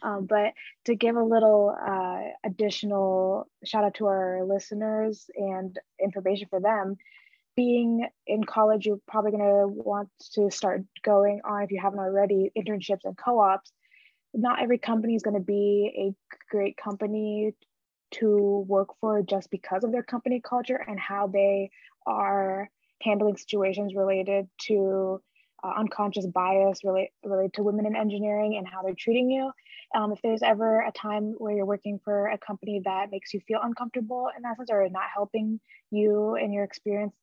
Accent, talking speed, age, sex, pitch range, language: American, 165 wpm, 20-39, female, 195-215 Hz, English